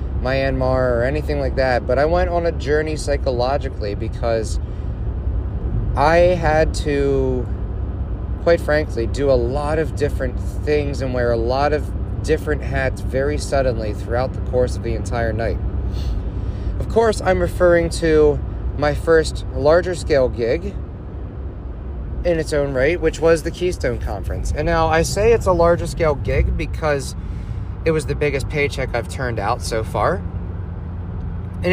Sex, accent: male, American